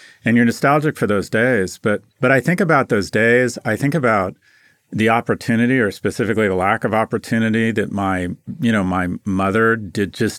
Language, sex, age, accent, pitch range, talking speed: English, male, 40-59, American, 100-130 Hz, 185 wpm